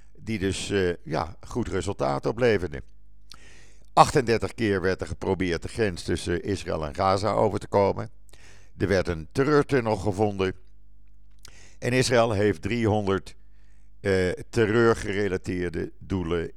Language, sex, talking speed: Dutch, male, 120 wpm